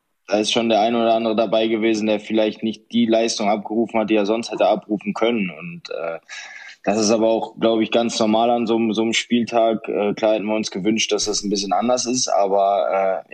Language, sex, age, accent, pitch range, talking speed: German, male, 20-39, German, 100-115 Hz, 230 wpm